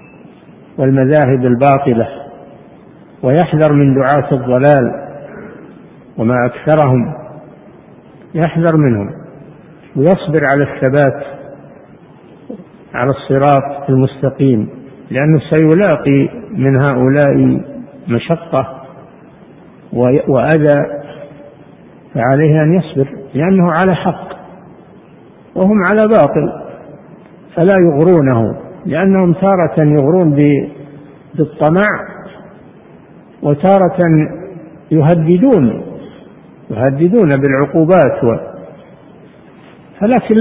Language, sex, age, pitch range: Arabic, male, 60-79, 135-170 Hz